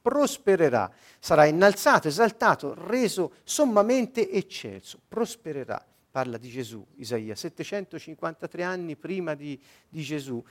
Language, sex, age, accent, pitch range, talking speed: Italian, male, 50-69, native, 135-190 Hz, 105 wpm